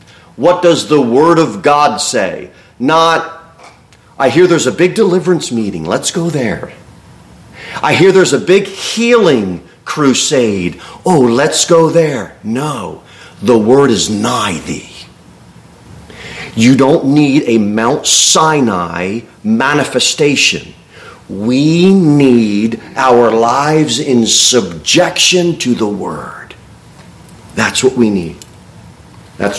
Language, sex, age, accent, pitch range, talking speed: English, male, 40-59, American, 110-165 Hz, 115 wpm